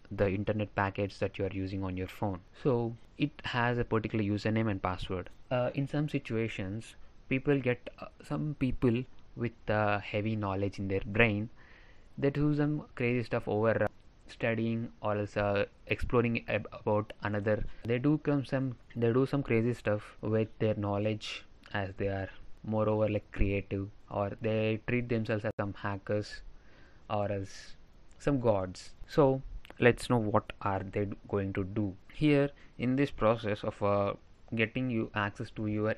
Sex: male